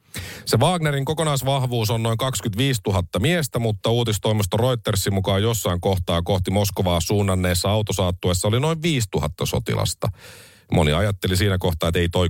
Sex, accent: male, native